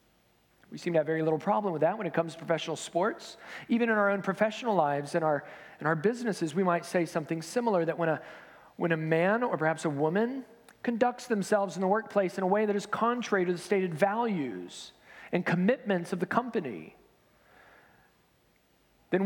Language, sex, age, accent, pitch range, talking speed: English, male, 40-59, American, 165-220 Hz, 185 wpm